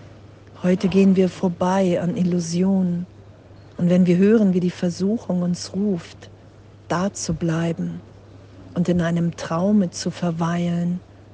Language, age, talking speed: German, 50-69, 125 wpm